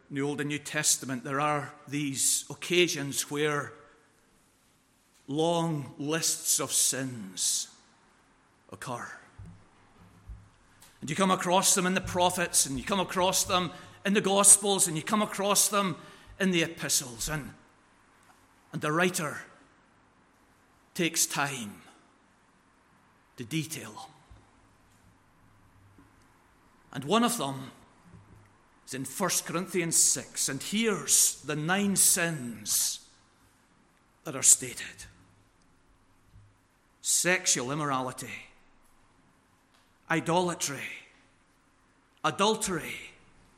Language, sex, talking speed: English, male, 95 wpm